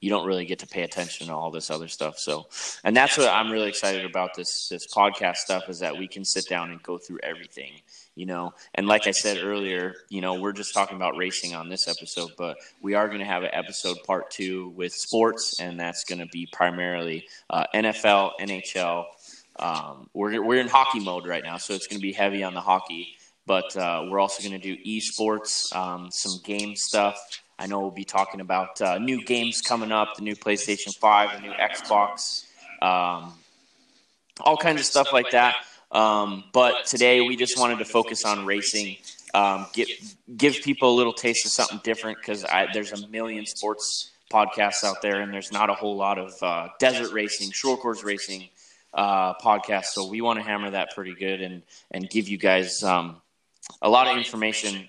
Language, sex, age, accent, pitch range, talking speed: English, male, 20-39, American, 95-110 Hz, 205 wpm